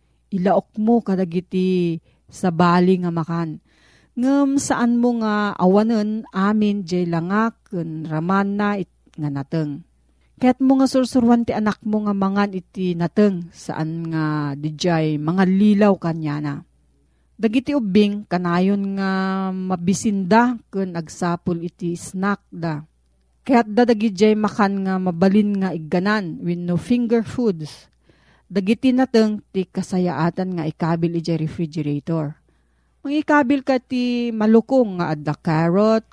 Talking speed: 125 wpm